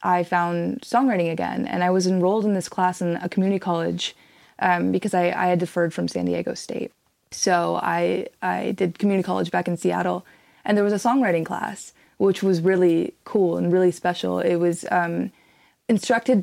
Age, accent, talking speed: 20-39, American, 185 wpm